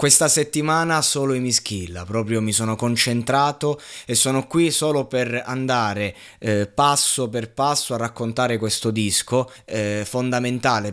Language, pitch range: Italian, 115-150 Hz